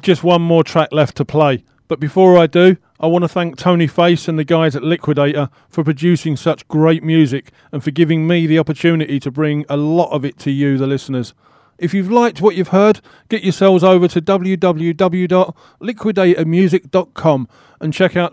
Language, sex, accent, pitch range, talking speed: English, male, British, 145-180 Hz, 185 wpm